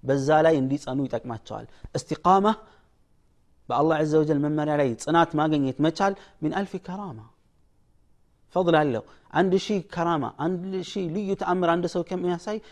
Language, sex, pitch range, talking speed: Amharic, male, 140-225 Hz, 145 wpm